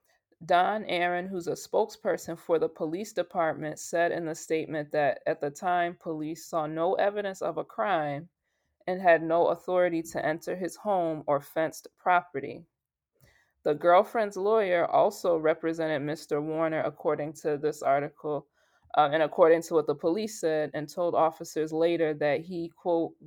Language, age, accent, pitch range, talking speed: English, 20-39, American, 155-175 Hz, 155 wpm